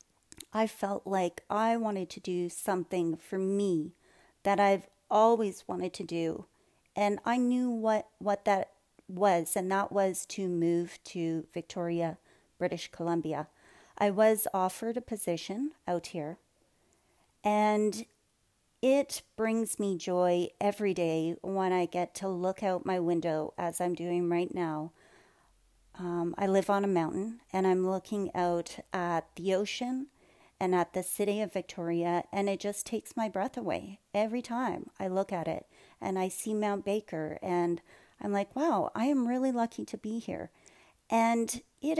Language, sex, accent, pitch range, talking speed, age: English, female, American, 175-225 Hz, 155 wpm, 40-59